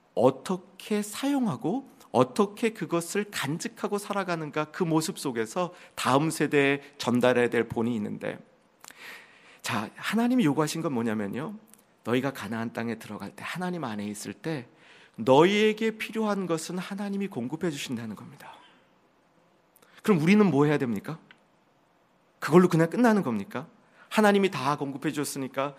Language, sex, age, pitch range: Korean, male, 40-59, 150-225 Hz